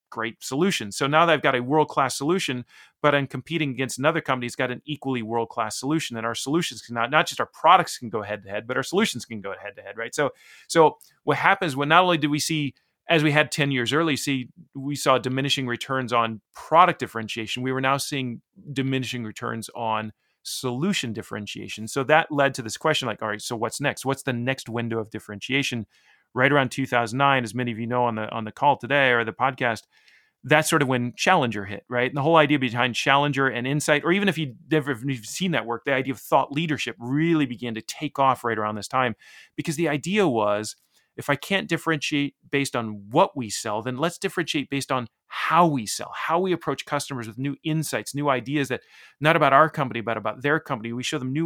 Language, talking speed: English, 230 wpm